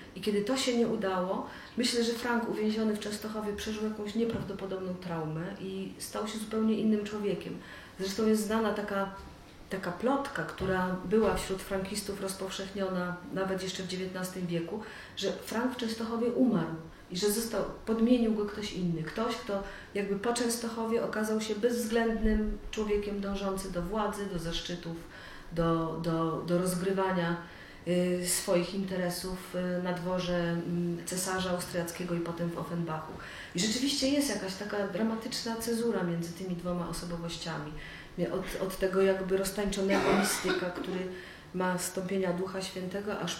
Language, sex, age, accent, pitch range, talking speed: Polish, female, 40-59, native, 180-215 Hz, 140 wpm